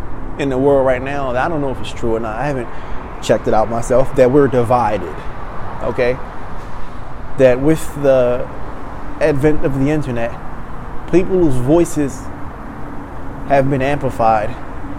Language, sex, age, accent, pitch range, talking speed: English, male, 20-39, American, 120-150 Hz, 145 wpm